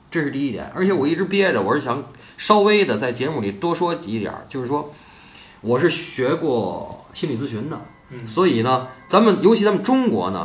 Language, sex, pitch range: Chinese, male, 125-200 Hz